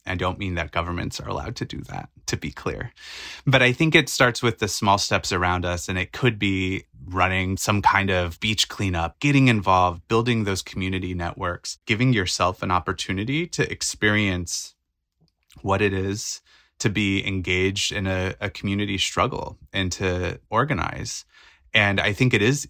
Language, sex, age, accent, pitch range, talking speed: English, male, 30-49, American, 90-105 Hz, 170 wpm